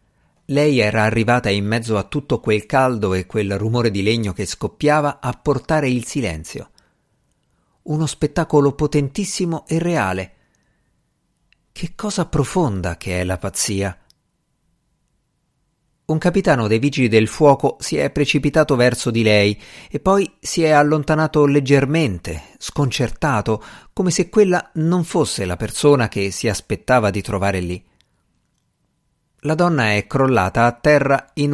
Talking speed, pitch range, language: 135 wpm, 105-150 Hz, Italian